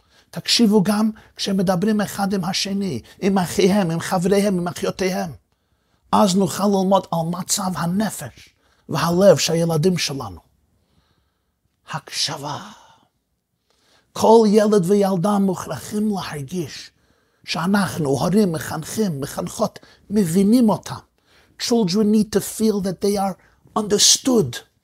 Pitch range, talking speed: 155-210 Hz, 100 wpm